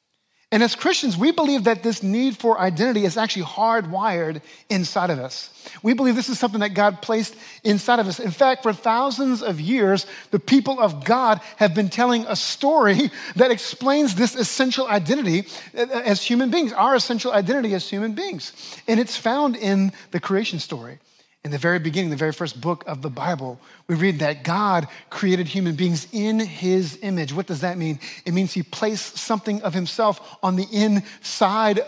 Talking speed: 185 wpm